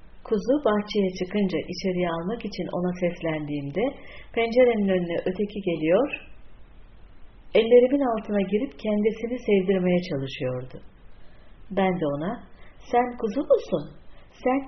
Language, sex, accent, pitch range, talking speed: Turkish, female, native, 165-230 Hz, 100 wpm